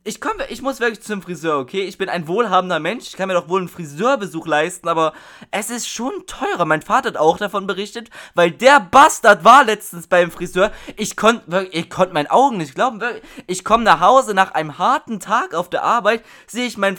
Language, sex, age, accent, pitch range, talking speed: German, male, 20-39, German, 170-220 Hz, 220 wpm